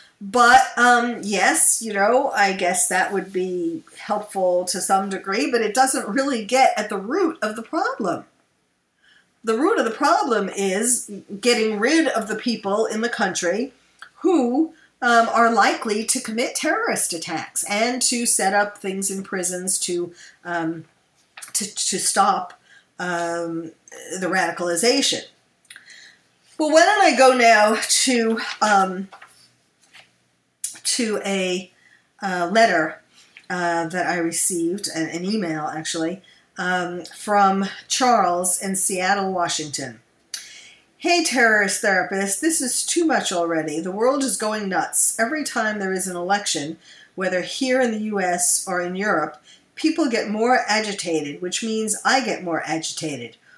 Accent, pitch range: American, 180-240 Hz